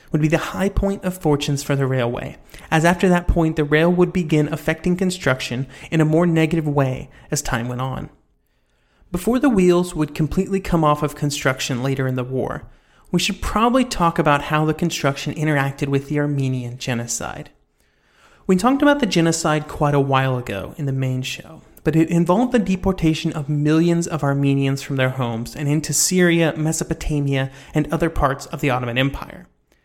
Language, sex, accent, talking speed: English, male, American, 185 wpm